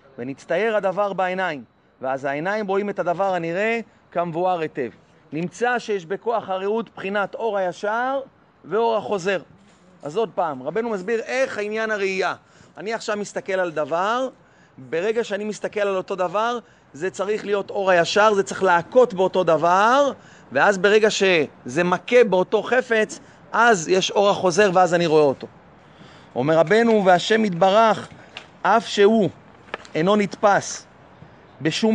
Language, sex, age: Hebrew, male, 30-49